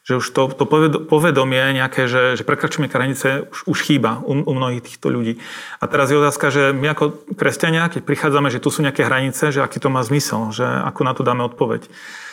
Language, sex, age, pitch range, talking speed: Slovak, male, 40-59, 130-155 Hz, 220 wpm